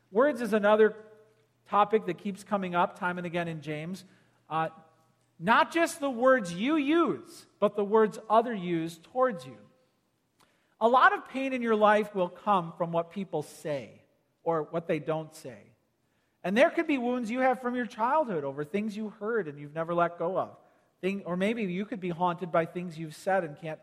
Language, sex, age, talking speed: English, male, 40-59, 195 wpm